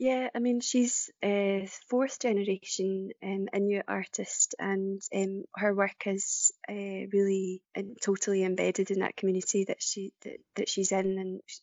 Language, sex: English, female